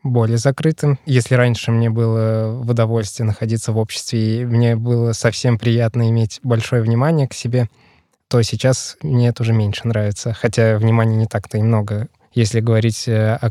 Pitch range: 115-125 Hz